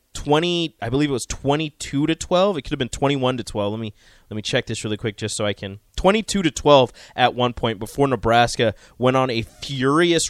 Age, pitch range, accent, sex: 20-39, 105-130 Hz, American, male